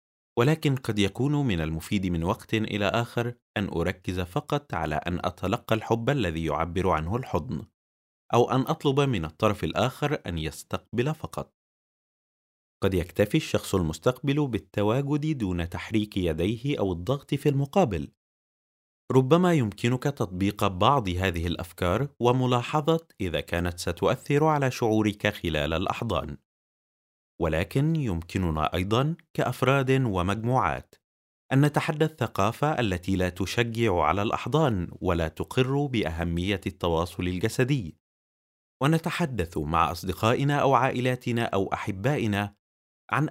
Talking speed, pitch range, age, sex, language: 110 wpm, 85-130 Hz, 30-49, male, Arabic